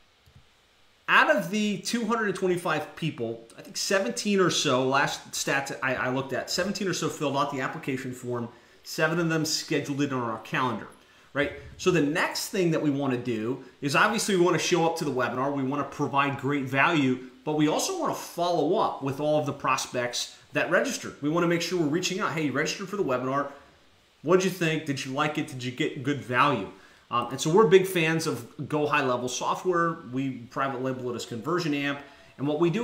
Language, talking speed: English, 220 wpm